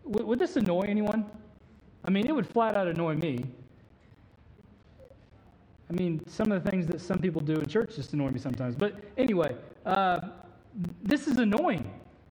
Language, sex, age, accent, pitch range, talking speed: English, male, 40-59, American, 175-245 Hz, 165 wpm